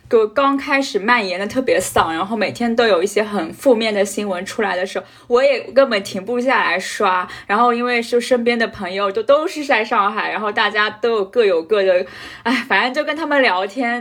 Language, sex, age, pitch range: Chinese, female, 20-39, 205-280 Hz